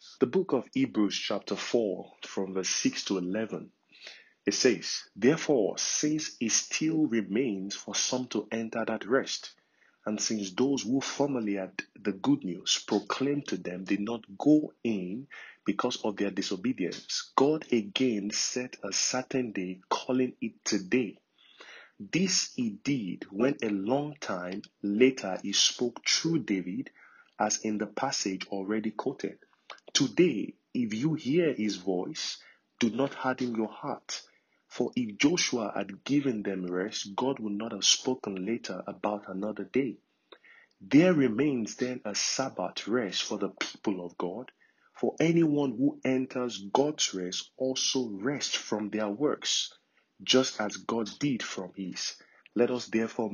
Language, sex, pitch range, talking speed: English, male, 105-135 Hz, 145 wpm